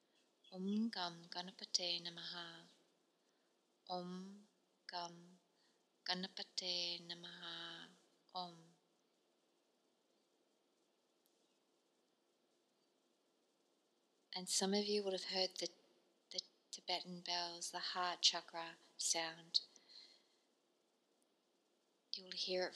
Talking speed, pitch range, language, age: 75 wpm, 170-185 Hz, English, 20-39